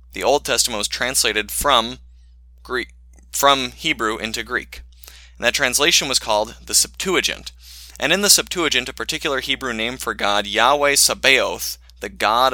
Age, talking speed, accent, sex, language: 20-39, 155 wpm, American, male, English